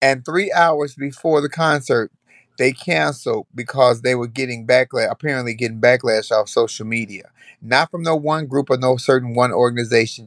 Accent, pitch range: American, 130-180 Hz